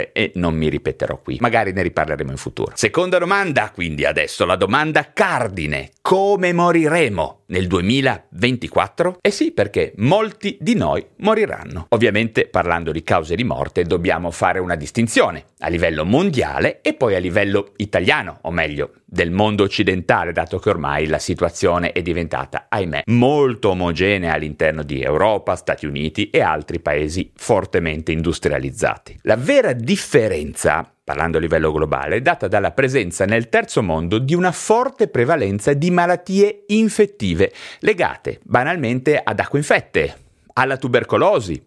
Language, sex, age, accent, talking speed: Italian, male, 40-59, native, 140 wpm